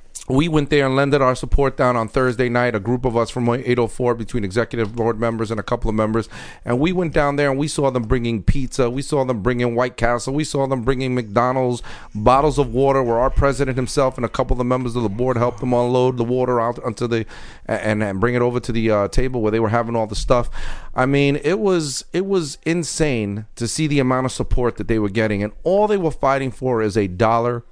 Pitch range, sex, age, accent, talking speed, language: 120-145 Hz, male, 40-59, American, 245 wpm, English